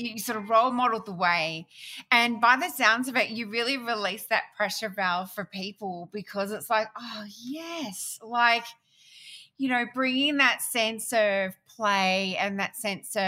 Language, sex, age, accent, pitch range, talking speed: English, female, 30-49, Australian, 185-225 Hz, 165 wpm